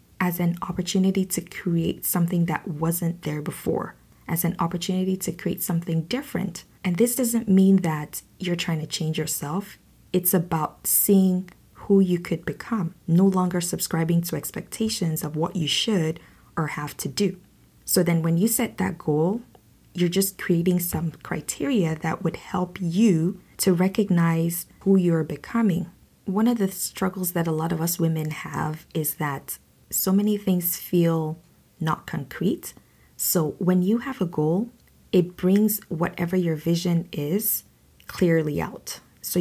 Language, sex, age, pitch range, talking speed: English, female, 20-39, 160-190 Hz, 155 wpm